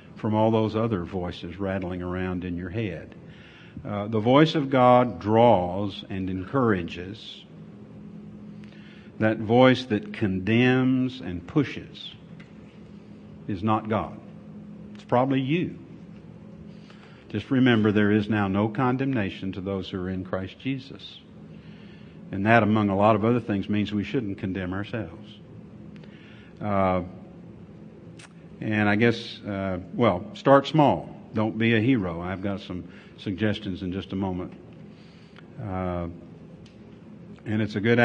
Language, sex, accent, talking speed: English, male, American, 130 wpm